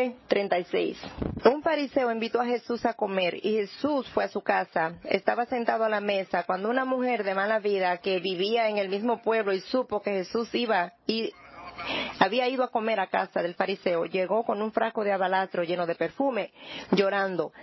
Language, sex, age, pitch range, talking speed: English, female, 40-59, 190-230 Hz, 185 wpm